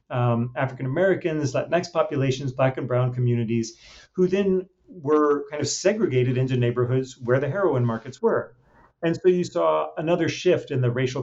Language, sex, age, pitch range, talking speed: English, male, 40-59, 125-165 Hz, 160 wpm